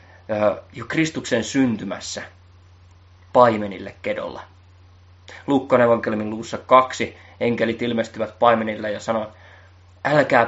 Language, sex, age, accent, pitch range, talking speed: Finnish, male, 20-39, native, 90-120 Hz, 85 wpm